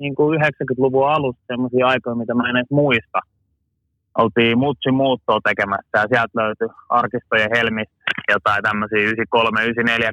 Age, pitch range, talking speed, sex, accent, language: 20-39, 100-130 Hz, 105 wpm, male, native, Finnish